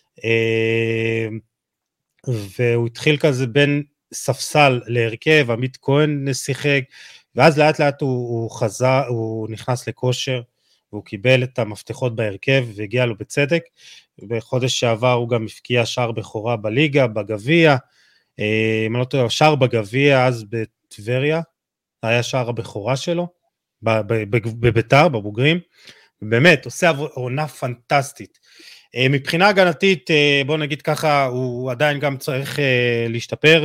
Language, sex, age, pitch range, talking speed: Hebrew, male, 30-49, 115-145 Hz, 110 wpm